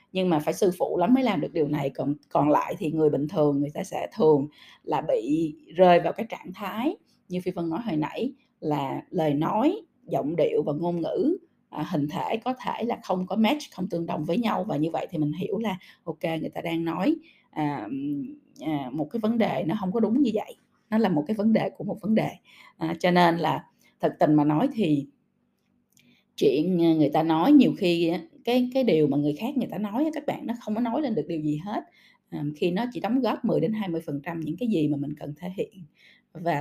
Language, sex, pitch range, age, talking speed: Vietnamese, female, 155-240 Hz, 20-39, 240 wpm